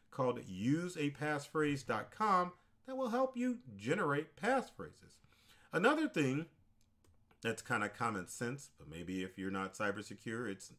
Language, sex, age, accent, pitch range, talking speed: English, male, 40-59, American, 105-160 Hz, 130 wpm